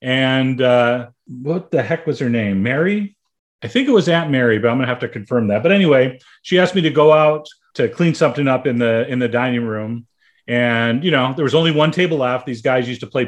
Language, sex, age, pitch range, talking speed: English, male, 40-59, 125-160 Hz, 245 wpm